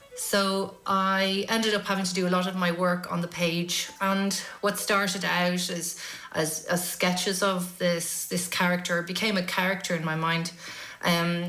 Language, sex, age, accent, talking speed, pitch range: English, female, 30-49, Irish, 180 wpm, 170-185 Hz